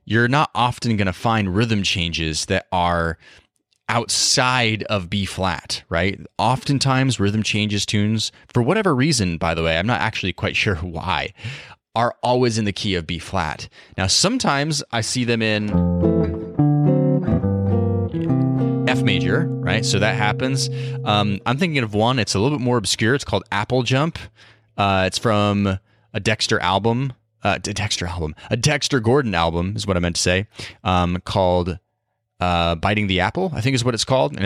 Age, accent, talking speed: 30-49, American, 165 wpm